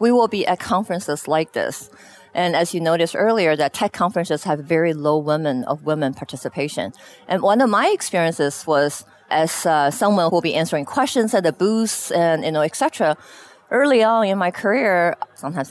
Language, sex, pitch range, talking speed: English, female, 160-225 Hz, 185 wpm